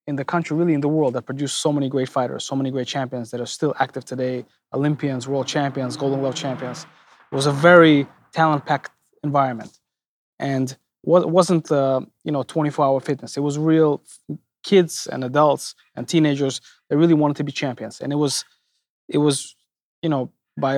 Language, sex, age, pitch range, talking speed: English, male, 20-39, 130-145 Hz, 190 wpm